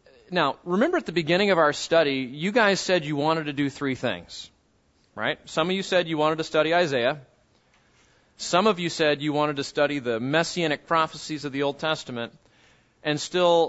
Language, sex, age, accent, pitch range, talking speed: English, male, 30-49, American, 135-170 Hz, 195 wpm